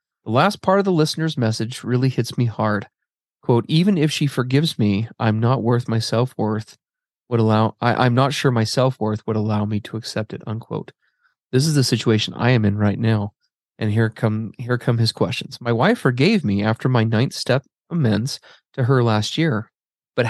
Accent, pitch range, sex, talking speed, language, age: American, 110-140 Hz, male, 190 wpm, English, 30-49